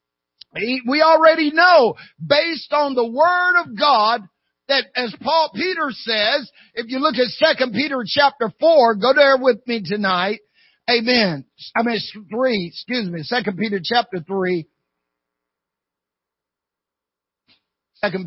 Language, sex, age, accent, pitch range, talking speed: English, male, 50-69, American, 185-260 Hz, 125 wpm